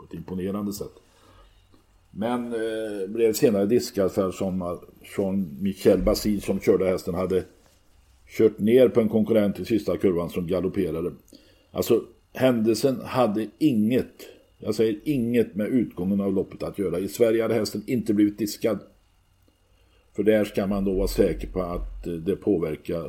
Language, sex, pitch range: Swedish, male, 90-110 Hz